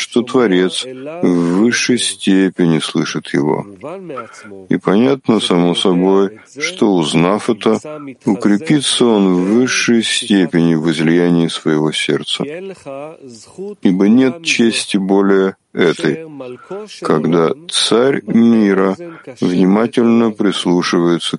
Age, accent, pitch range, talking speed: 50-69, native, 95-125 Hz, 95 wpm